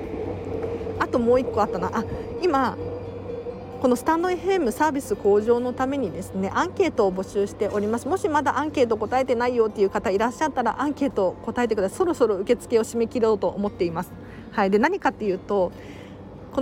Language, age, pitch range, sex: Japanese, 40-59, 205-275 Hz, female